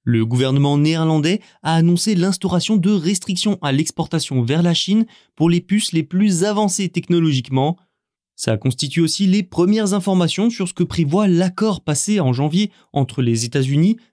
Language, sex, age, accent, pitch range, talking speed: French, male, 20-39, French, 140-185 Hz, 155 wpm